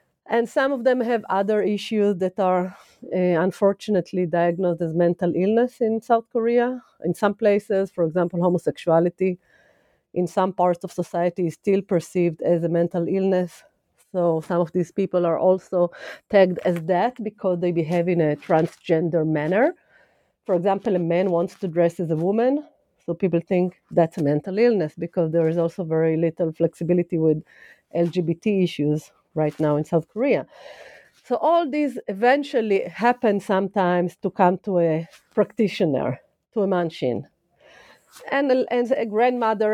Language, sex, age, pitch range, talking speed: English, female, 40-59, 170-215 Hz, 155 wpm